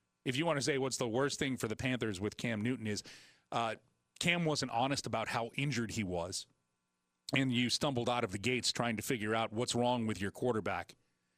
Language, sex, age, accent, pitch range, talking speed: English, male, 40-59, American, 115-170 Hz, 215 wpm